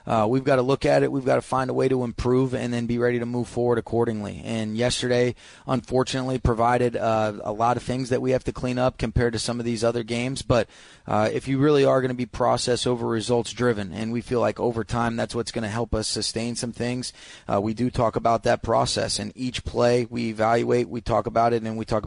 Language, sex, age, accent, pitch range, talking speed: English, male, 30-49, American, 115-125 Hz, 250 wpm